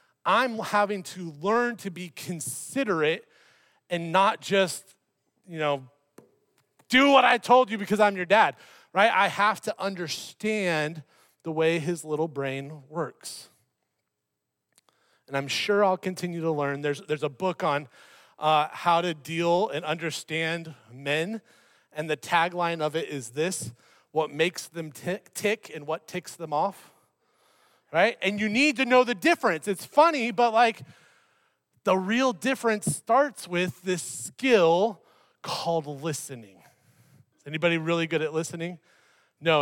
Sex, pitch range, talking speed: male, 160-210 Hz, 140 wpm